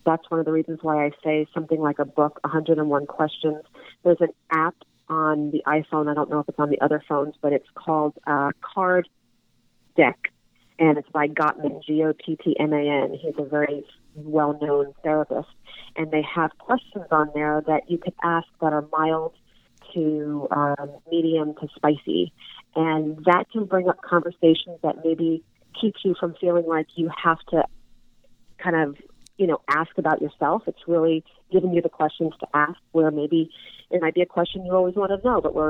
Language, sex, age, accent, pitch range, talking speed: English, female, 40-59, American, 155-200 Hz, 180 wpm